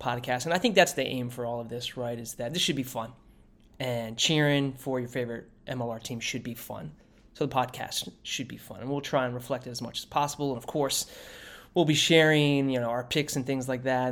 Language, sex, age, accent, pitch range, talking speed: English, male, 20-39, American, 125-140 Hz, 245 wpm